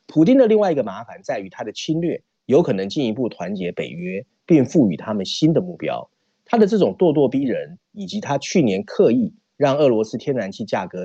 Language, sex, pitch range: Chinese, male, 120-190 Hz